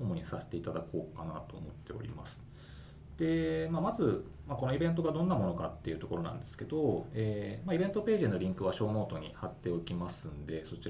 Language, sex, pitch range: Japanese, male, 95-135 Hz